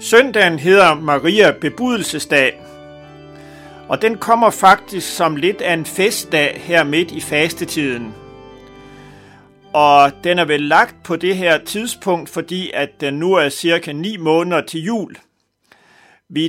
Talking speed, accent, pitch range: 135 wpm, native, 145-195 Hz